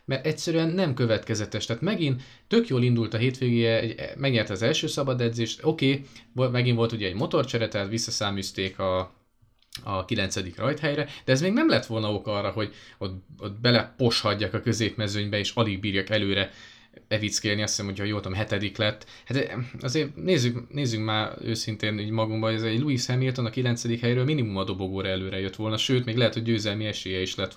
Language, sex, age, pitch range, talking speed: Hungarian, male, 20-39, 110-130 Hz, 180 wpm